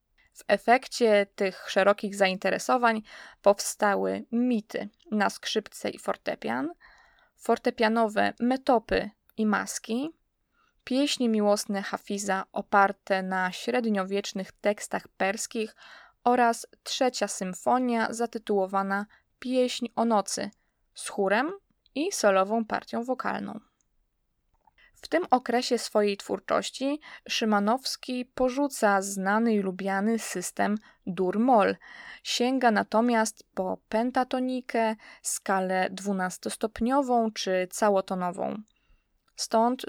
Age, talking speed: 20-39, 85 wpm